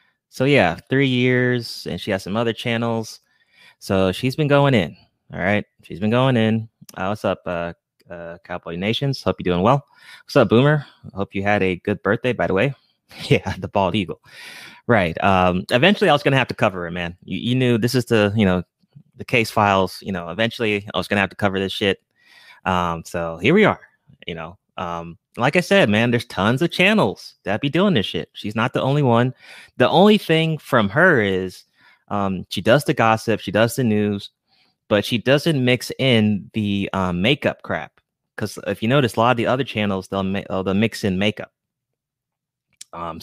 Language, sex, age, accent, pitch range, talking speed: English, male, 20-39, American, 95-130 Hz, 205 wpm